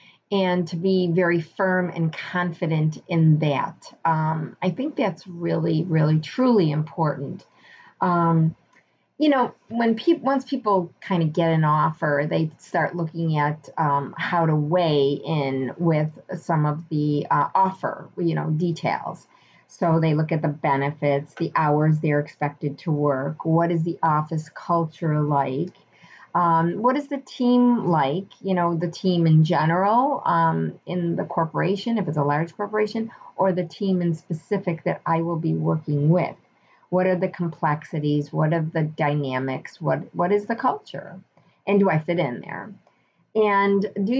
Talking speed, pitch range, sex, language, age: 160 wpm, 155-195 Hz, female, English, 30-49